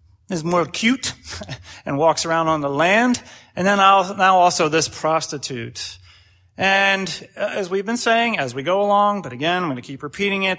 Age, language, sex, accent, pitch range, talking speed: 30-49, English, male, American, 150-195 Hz, 180 wpm